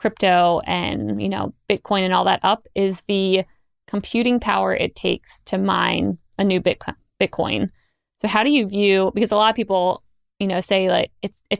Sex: female